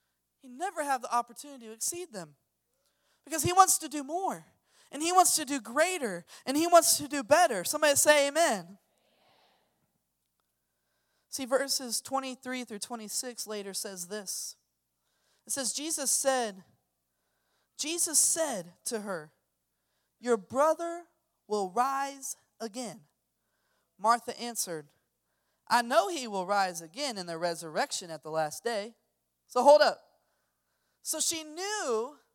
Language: English